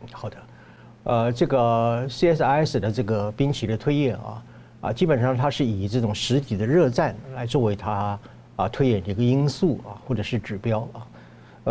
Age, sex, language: 50-69, male, Chinese